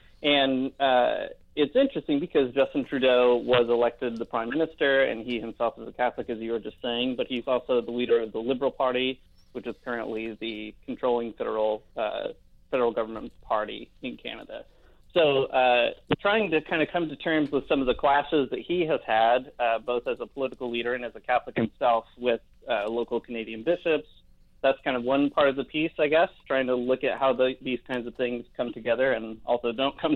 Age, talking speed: 30-49, 205 wpm